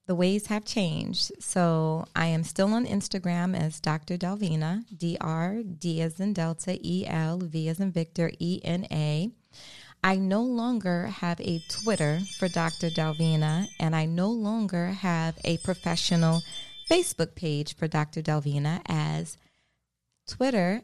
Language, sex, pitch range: English, female, 155-185 Hz